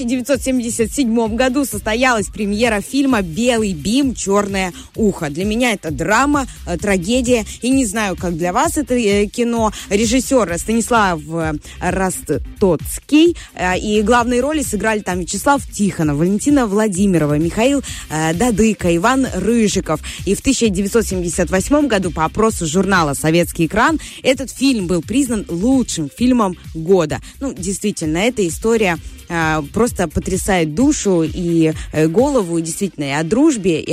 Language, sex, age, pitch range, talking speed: Russian, female, 20-39, 175-245 Hz, 120 wpm